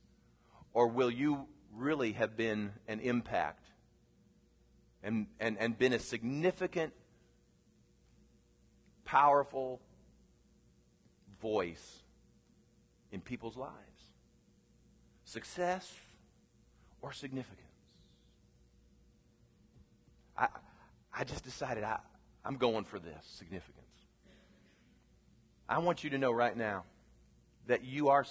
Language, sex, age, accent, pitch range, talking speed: English, female, 40-59, American, 100-150 Hz, 90 wpm